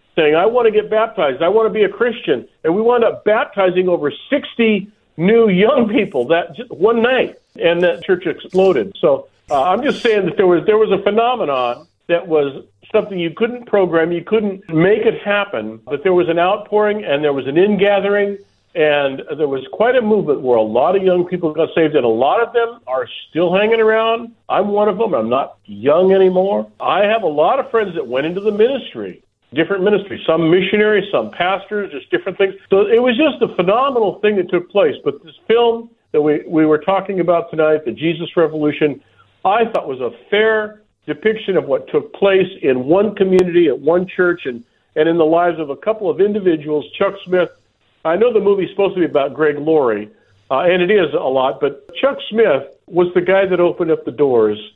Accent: American